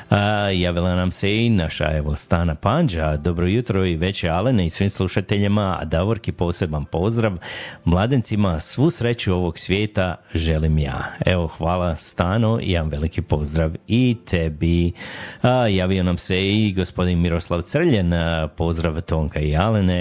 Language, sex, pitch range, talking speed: Croatian, male, 80-100 Hz, 145 wpm